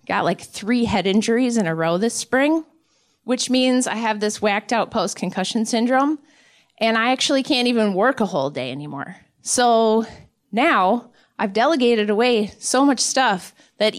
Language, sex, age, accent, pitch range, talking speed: English, female, 30-49, American, 190-245 Hz, 165 wpm